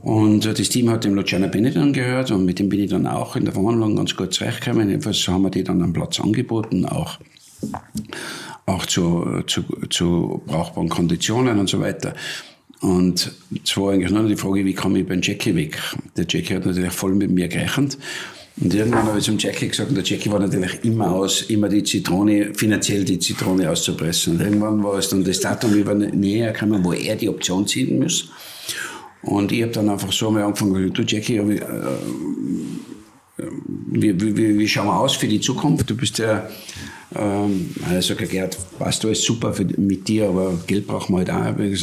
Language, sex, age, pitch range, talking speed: German, male, 60-79, 95-110 Hz, 190 wpm